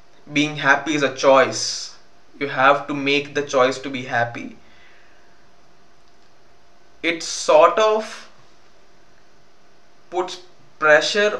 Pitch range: 145-190 Hz